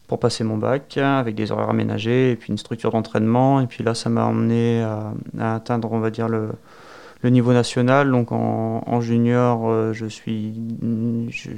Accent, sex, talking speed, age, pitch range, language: French, male, 185 wpm, 30-49, 110-120 Hz, French